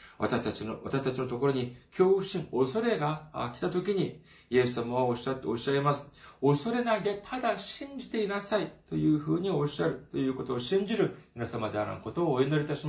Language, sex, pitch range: Japanese, male, 110-170 Hz